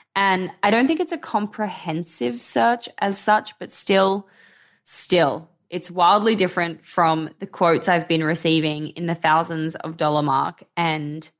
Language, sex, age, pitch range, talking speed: English, female, 20-39, 165-195 Hz, 155 wpm